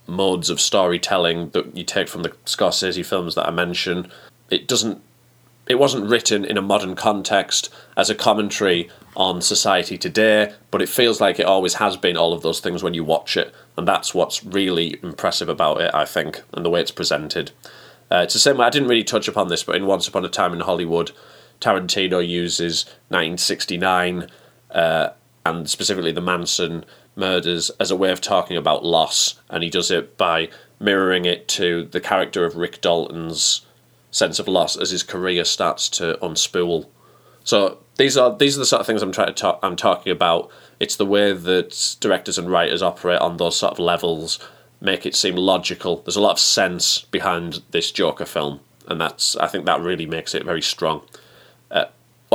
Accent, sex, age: British, male, 30-49